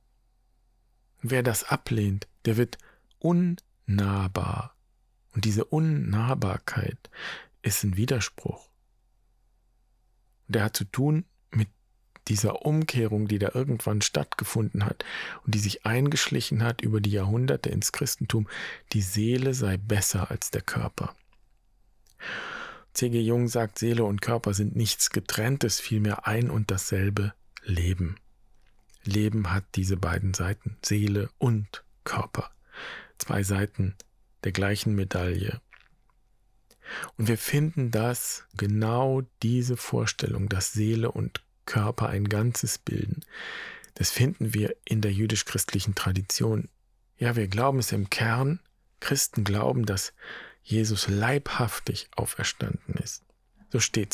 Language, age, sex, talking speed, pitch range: German, 40-59, male, 115 wpm, 100-115 Hz